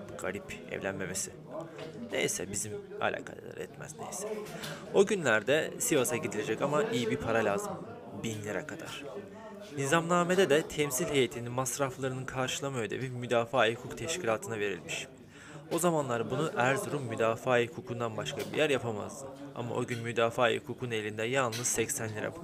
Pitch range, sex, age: 110-135 Hz, male, 30-49